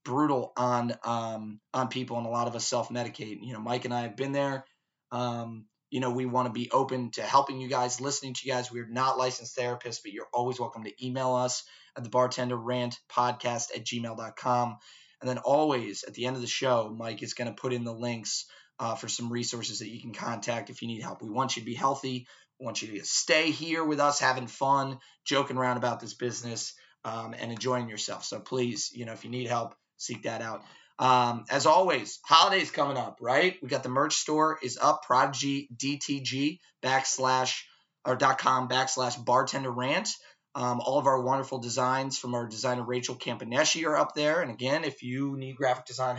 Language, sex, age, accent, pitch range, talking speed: English, male, 20-39, American, 120-135 Hz, 210 wpm